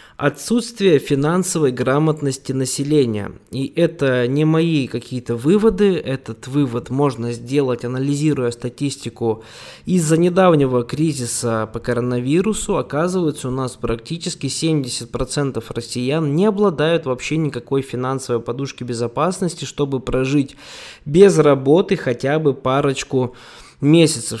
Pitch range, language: 125-160 Hz, Russian